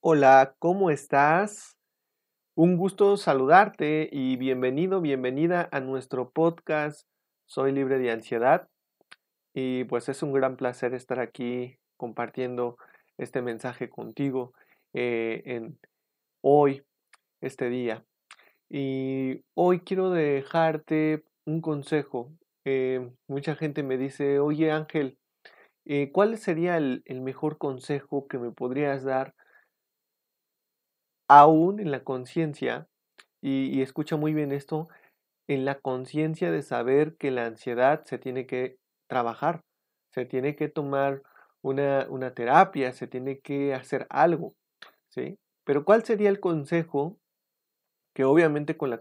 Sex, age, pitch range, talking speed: male, 40-59, 130-155 Hz, 125 wpm